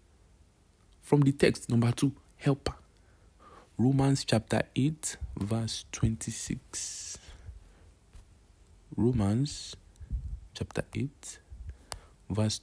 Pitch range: 90-140 Hz